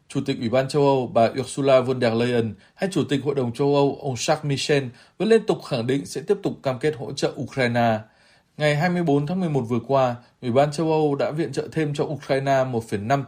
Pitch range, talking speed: 115-145 Hz, 230 wpm